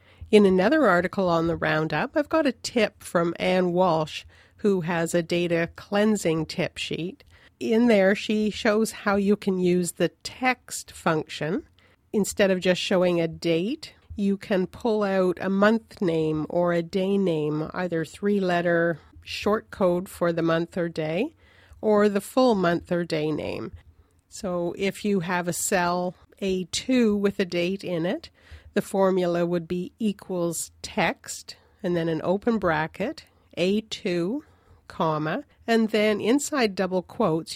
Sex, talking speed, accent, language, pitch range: female, 150 wpm, American, English, 170-205 Hz